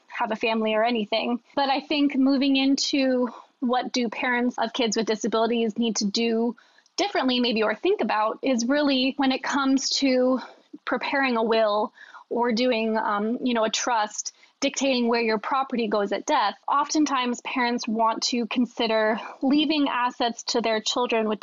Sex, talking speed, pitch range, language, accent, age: female, 165 wpm, 225-275 Hz, English, American, 20-39